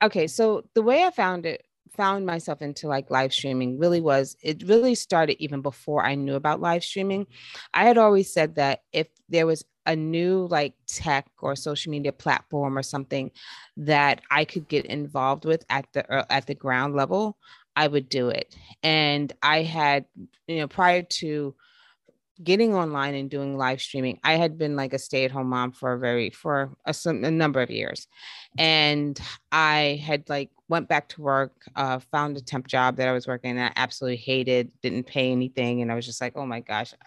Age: 30-49